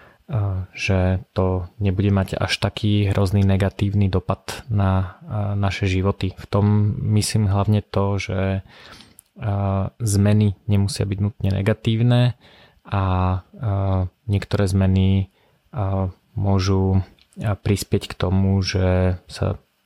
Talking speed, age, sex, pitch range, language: 95 wpm, 20-39, male, 95-105 Hz, Slovak